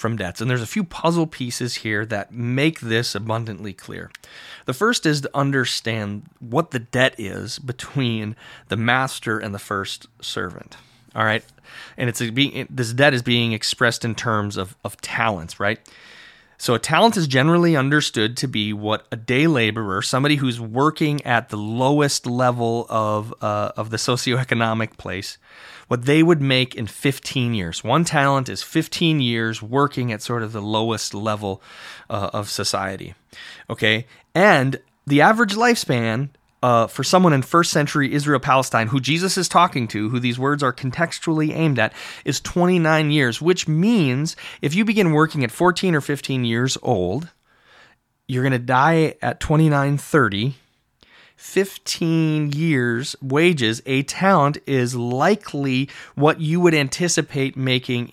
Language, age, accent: English, 30-49, American